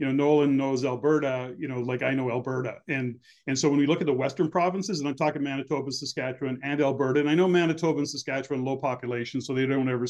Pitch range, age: 130-150 Hz, 40-59